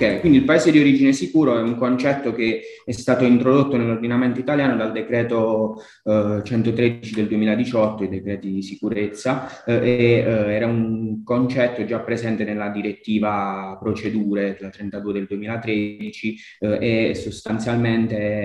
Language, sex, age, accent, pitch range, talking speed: Italian, male, 20-39, native, 105-120 Hz, 135 wpm